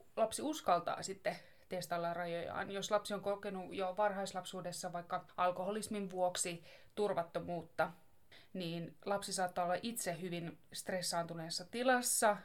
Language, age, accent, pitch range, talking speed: Finnish, 20-39, native, 175-200 Hz, 110 wpm